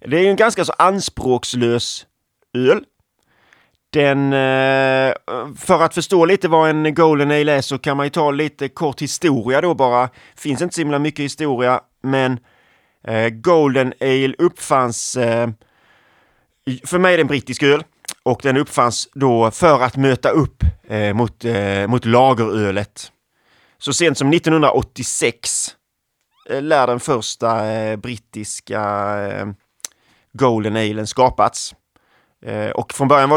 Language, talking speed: Swedish, 125 wpm